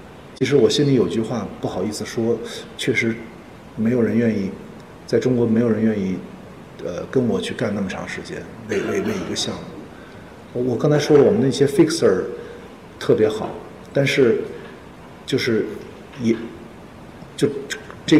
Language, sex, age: Chinese, male, 50-69